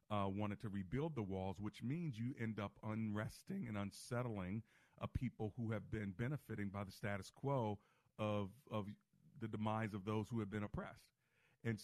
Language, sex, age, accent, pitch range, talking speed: English, male, 40-59, American, 95-115 Hz, 175 wpm